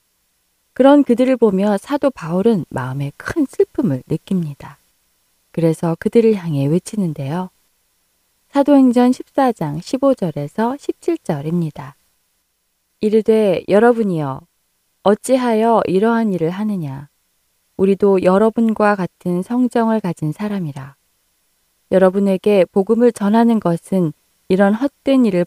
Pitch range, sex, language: 160-220 Hz, female, Korean